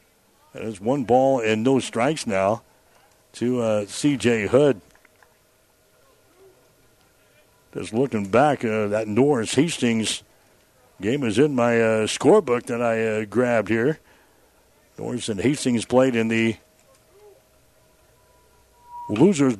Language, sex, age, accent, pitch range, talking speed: English, male, 60-79, American, 115-135 Hz, 110 wpm